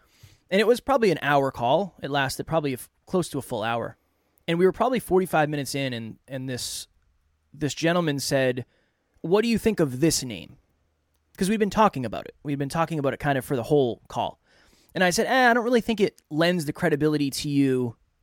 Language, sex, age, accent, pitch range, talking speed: English, male, 20-39, American, 125-185 Hz, 225 wpm